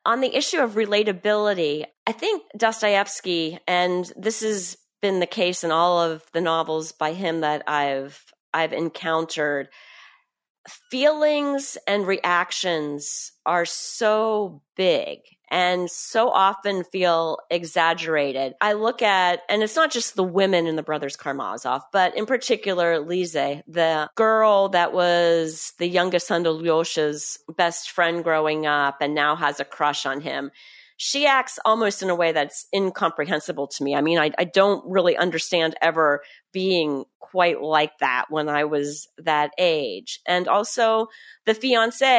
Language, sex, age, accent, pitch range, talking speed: English, female, 40-59, American, 160-210 Hz, 150 wpm